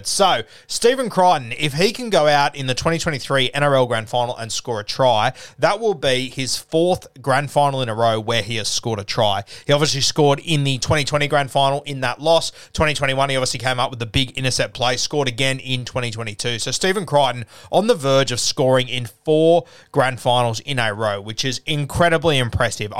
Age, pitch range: 30-49, 120-155 Hz